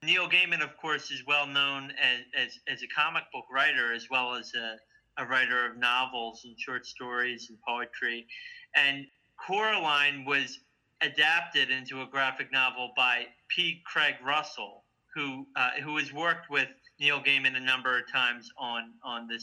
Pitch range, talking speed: 130-165 Hz, 165 wpm